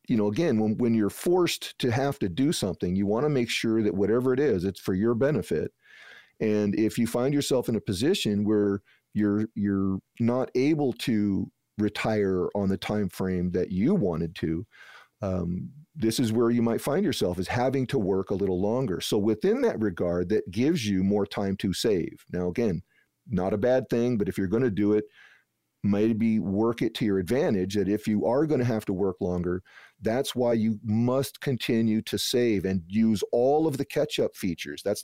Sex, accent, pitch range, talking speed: male, American, 100-120 Hz, 200 wpm